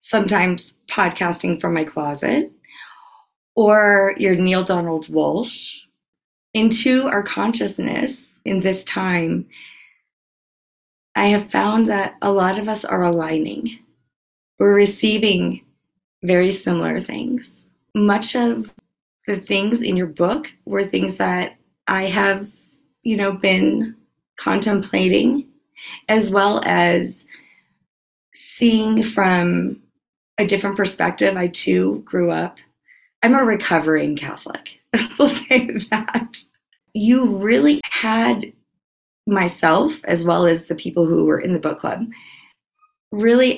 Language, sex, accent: English, female, American